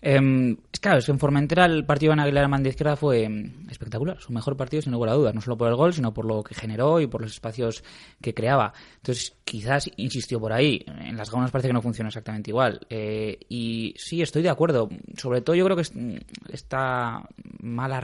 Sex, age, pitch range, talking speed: male, 20-39, 110-140 Hz, 215 wpm